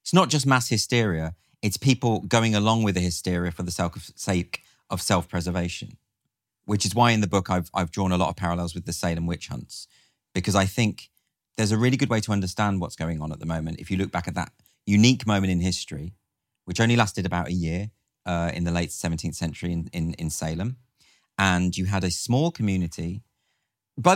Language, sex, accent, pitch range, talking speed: English, male, British, 90-120 Hz, 210 wpm